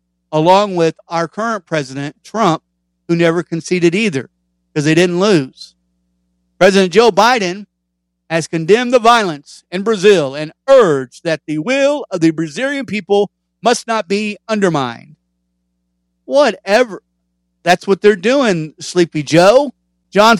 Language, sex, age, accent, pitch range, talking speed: English, male, 50-69, American, 130-200 Hz, 130 wpm